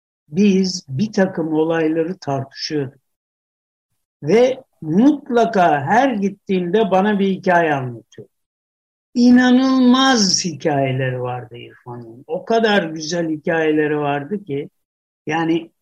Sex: male